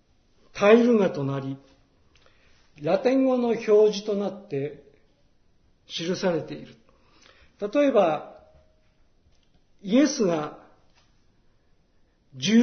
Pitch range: 135-220 Hz